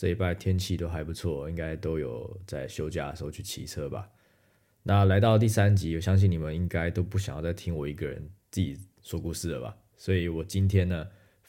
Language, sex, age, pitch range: Chinese, male, 20-39, 85-100 Hz